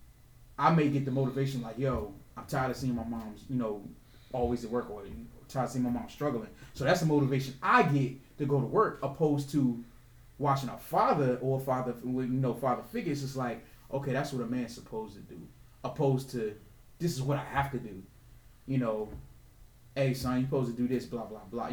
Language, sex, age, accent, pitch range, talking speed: English, male, 30-49, American, 120-150 Hz, 230 wpm